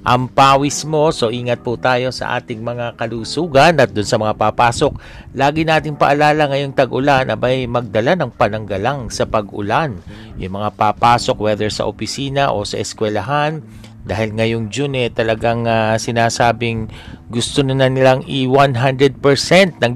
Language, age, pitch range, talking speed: Filipino, 50-69, 110-135 Hz, 145 wpm